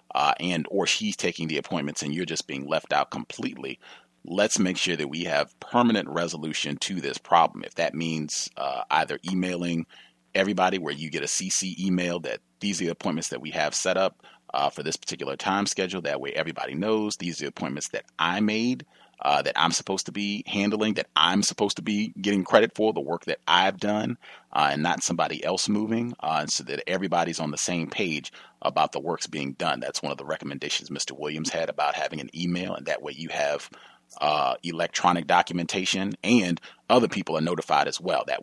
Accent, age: American, 30-49